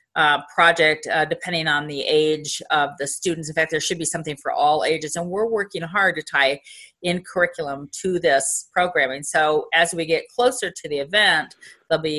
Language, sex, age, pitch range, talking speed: English, female, 40-59, 155-190 Hz, 190 wpm